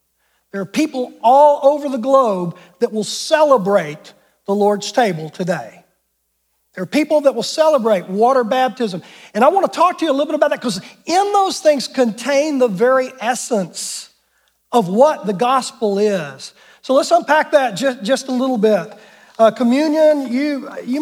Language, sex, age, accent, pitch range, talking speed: English, male, 40-59, American, 215-275 Hz, 170 wpm